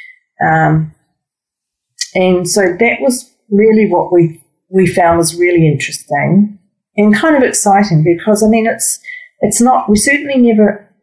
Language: English